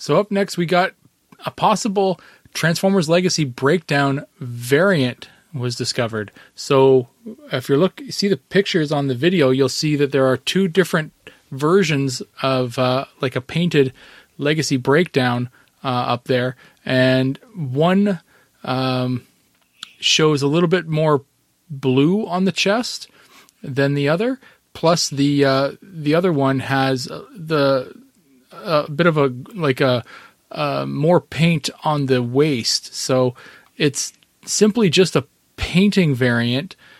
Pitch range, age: 130-175 Hz, 30-49